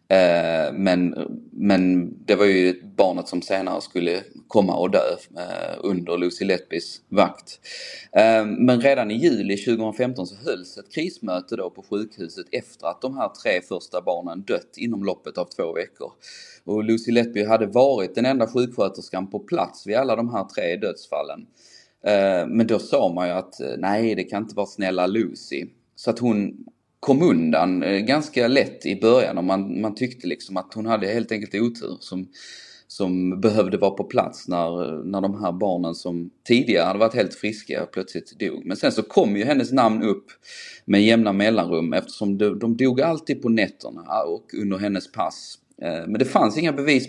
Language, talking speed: English, 170 wpm